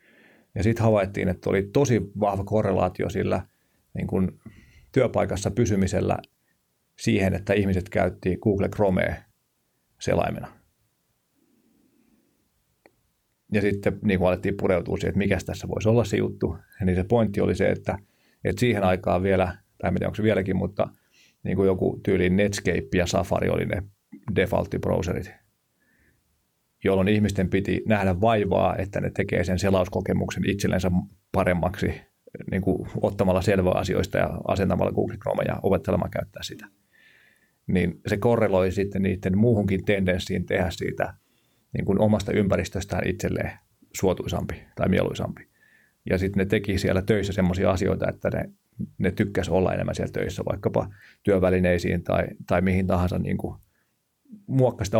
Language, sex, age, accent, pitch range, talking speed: Finnish, male, 30-49, native, 95-105 Hz, 135 wpm